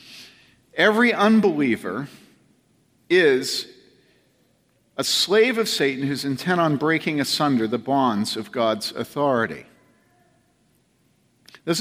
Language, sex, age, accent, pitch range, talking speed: English, male, 50-69, American, 125-170 Hz, 90 wpm